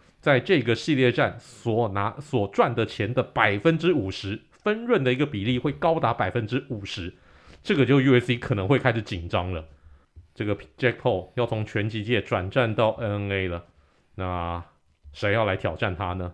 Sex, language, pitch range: male, Chinese, 100-140 Hz